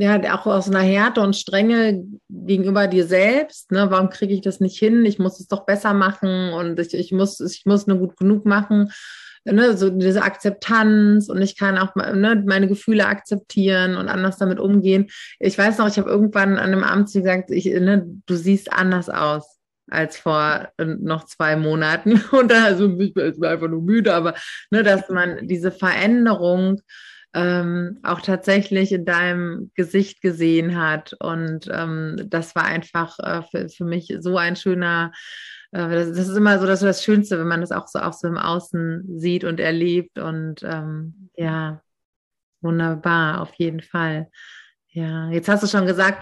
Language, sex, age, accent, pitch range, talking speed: German, female, 30-49, German, 175-200 Hz, 180 wpm